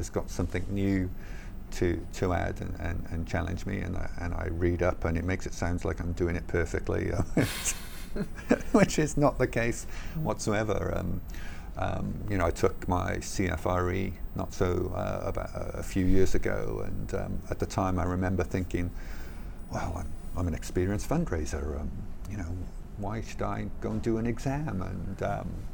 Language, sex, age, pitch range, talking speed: English, male, 50-69, 85-100 Hz, 175 wpm